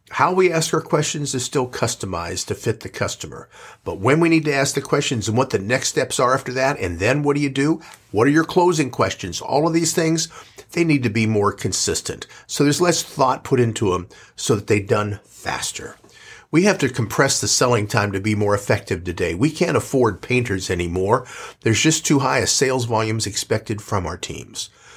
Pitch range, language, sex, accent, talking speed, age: 105-150 Hz, English, male, American, 215 wpm, 50-69